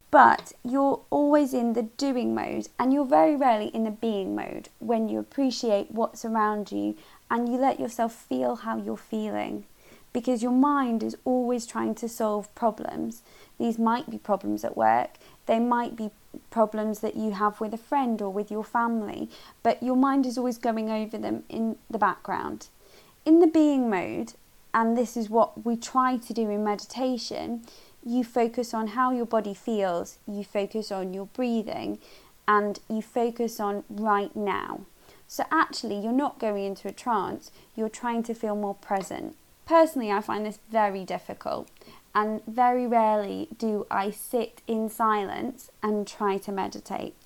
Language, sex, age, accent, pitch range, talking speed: English, female, 20-39, British, 205-245 Hz, 170 wpm